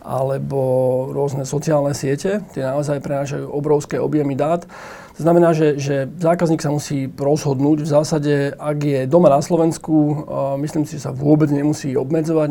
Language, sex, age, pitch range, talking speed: Slovak, male, 40-59, 140-155 Hz, 160 wpm